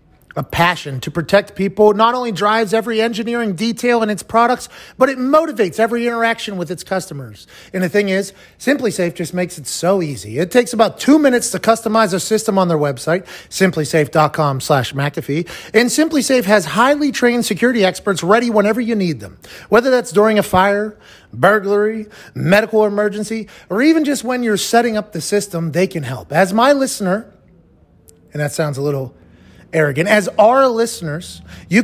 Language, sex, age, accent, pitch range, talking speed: English, male, 30-49, American, 165-230 Hz, 175 wpm